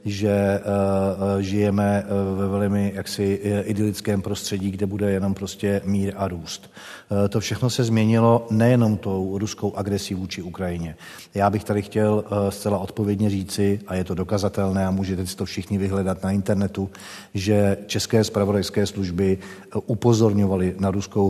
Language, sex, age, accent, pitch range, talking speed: Czech, male, 40-59, native, 95-100 Hz, 140 wpm